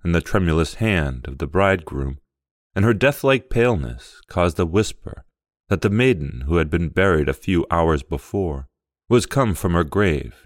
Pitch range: 70-100 Hz